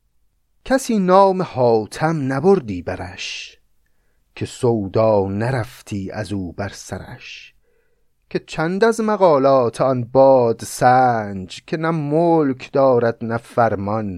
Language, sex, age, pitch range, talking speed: Persian, male, 30-49, 115-170 Hz, 100 wpm